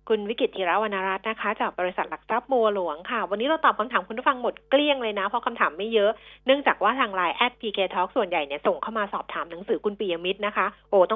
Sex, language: female, Thai